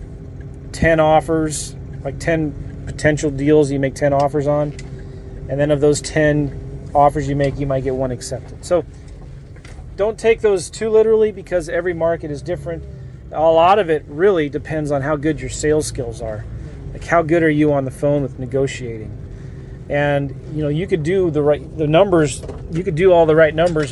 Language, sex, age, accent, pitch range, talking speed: English, male, 30-49, American, 135-165 Hz, 190 wpm